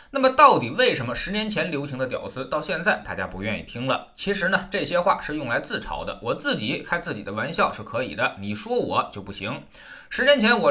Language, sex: Chinese, male